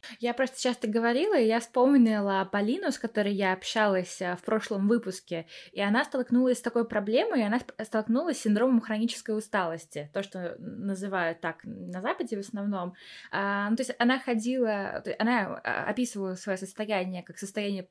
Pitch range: 190-230 Hz